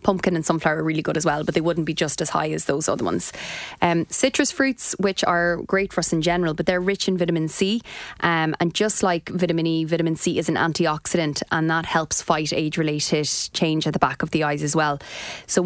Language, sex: English, female